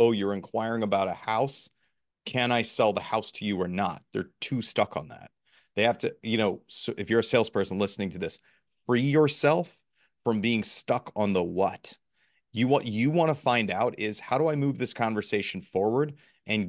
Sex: male